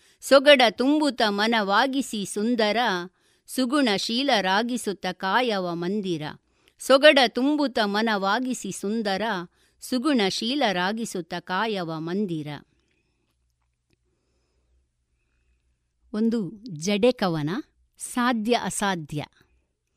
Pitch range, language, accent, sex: 180-250 Hz, Kannada, native, female